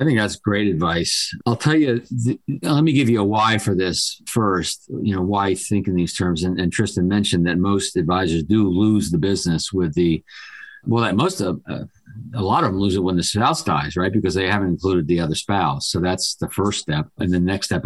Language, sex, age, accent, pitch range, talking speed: English, male, 50-69, American, 85-105 Hz, 240 wpm